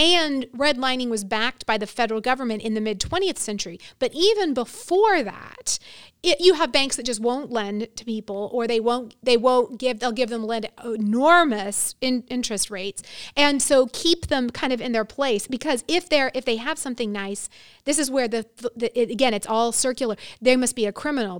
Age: 30-49